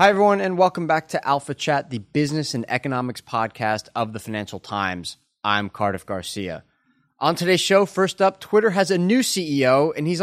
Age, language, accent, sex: 30-49, English, American, male